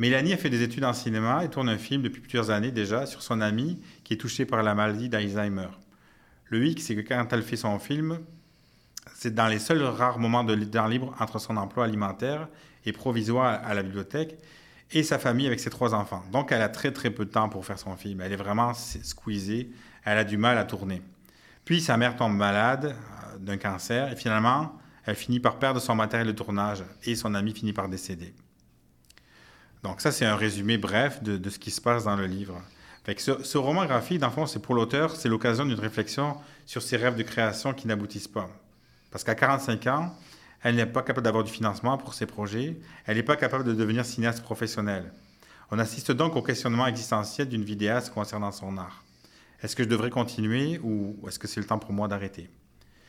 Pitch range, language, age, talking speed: 105-125 Hz, French, 40-59, 215 wpm